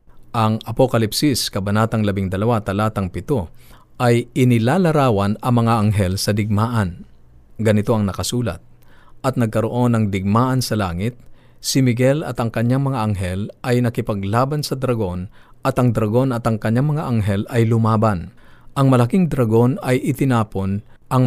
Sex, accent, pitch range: male, native, 100-125 Hz